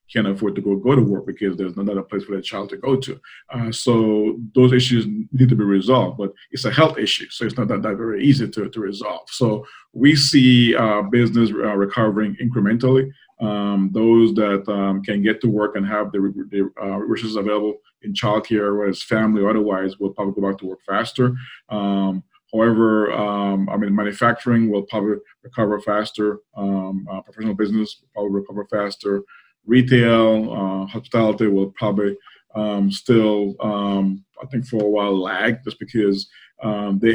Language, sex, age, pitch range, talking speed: English, male, 30-49, 100-115 Hz, 185 wpm